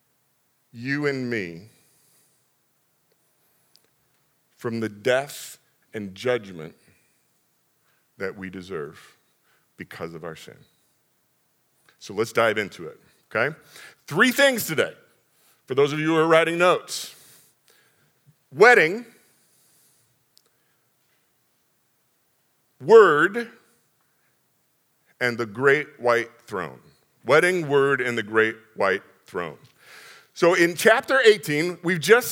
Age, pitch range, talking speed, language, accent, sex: 50-69, 145-195 Hz, 95 wpm, English, American, male